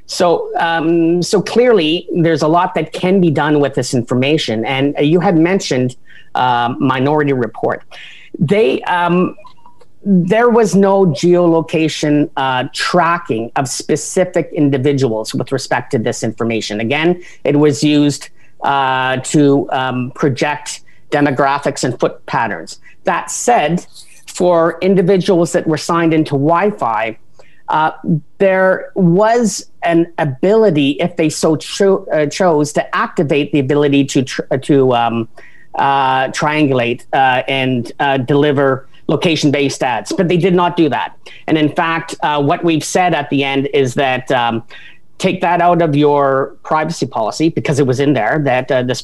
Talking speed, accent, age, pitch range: 145 wpm, American, 50-69, 140-175 Hz